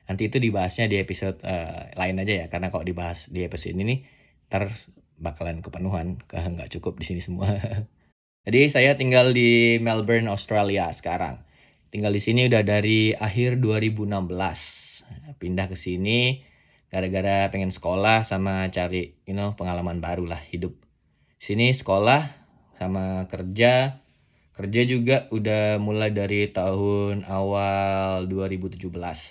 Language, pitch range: Indonesian, 90-110 Hz